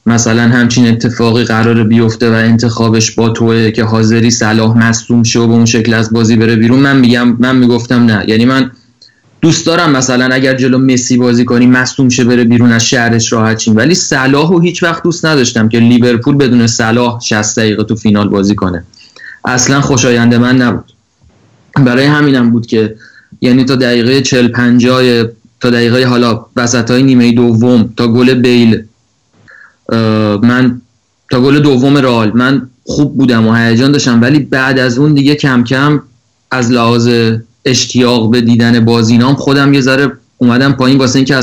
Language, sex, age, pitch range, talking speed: Persian, male, 30-49, 115-130 Hz, 160 wpm